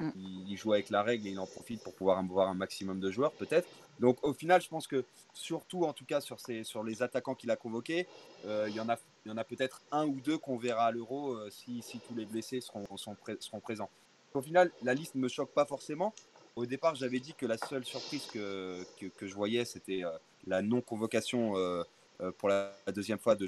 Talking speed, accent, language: 245 wpm, French, French